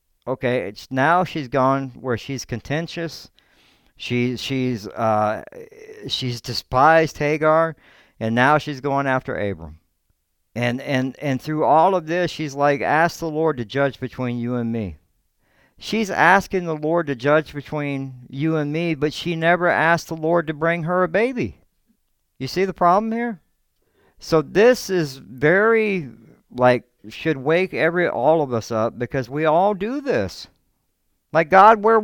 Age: 60-79